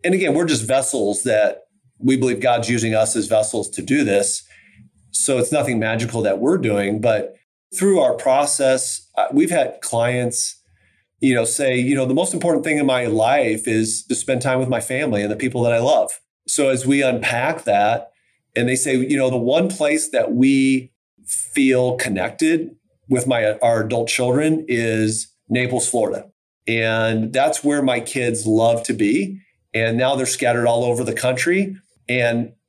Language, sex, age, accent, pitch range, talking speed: English, male, 40-59, American, 115-135 Hz, 180 wpm